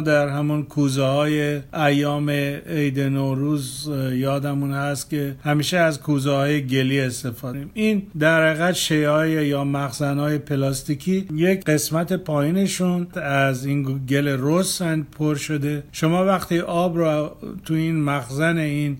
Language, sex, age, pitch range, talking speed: Persian, male, 50-69, 135-155 Hz, 125 wpm